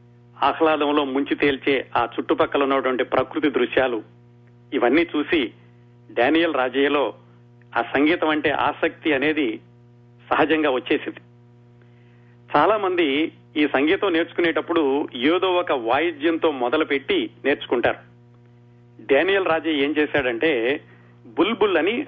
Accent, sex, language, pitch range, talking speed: native, male, Telugu, 120-155 Hz, 95 wpm